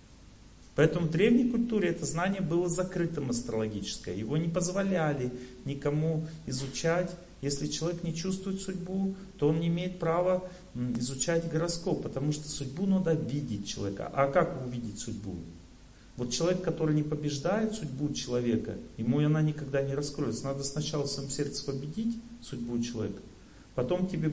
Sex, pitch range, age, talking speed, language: male, 125-170 Hz, 40-59, 145 wpm, Russian